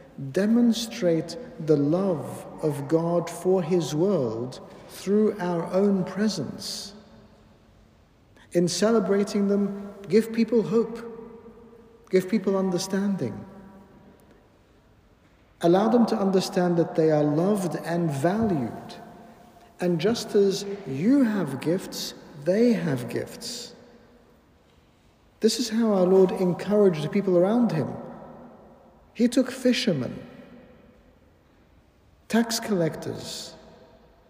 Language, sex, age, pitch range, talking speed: English, male, 50-69, 160-215 Hz, 95 wpm